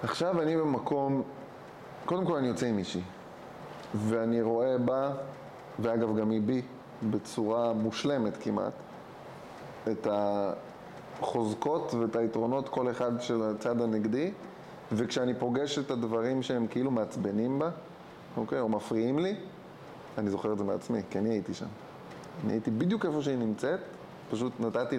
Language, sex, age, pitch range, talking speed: Hebrew, male, 20-39, 115-140 Hz, 135 wpm